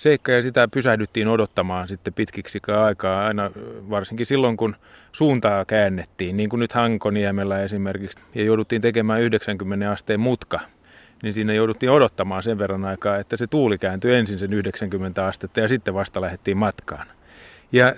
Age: 30-49